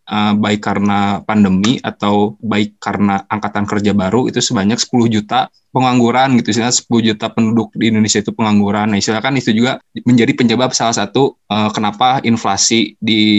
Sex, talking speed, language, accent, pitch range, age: male, 160 wpm, Indonesian, native, 105-130 Hz, 20-39